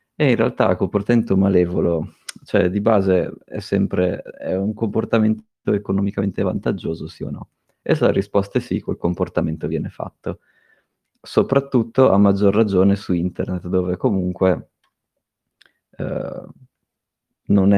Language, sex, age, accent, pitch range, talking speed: Italian, male, 20-39, native, 90-100 Hz, 130 wpm